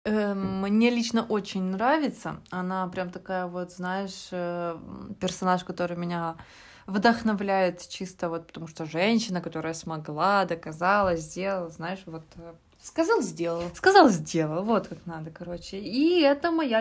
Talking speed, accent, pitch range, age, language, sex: 120 wpm, native, 175-230 Hz, 20-39, Ukrainian, female